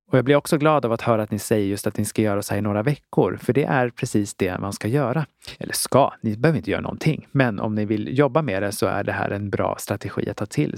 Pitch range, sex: 105-135 Hz, male